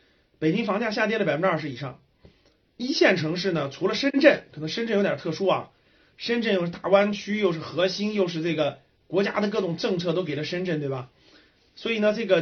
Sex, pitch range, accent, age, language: male, 155-220 Hz, native, 30-49, Chinese